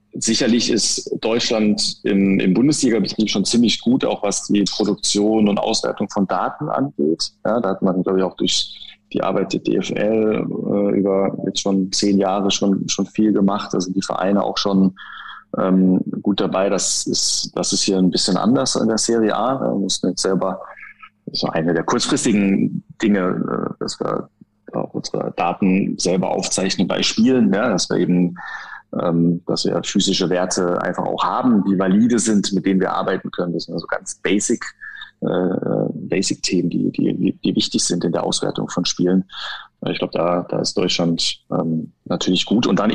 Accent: German